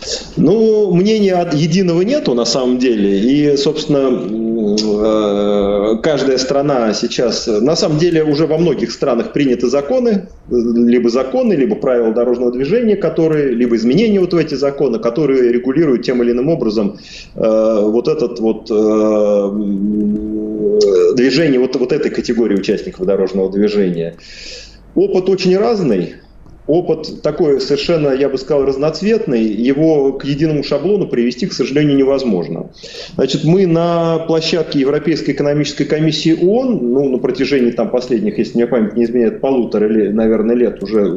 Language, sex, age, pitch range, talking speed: Russian, male, 30-49, 115-160 Hz, 135 wpm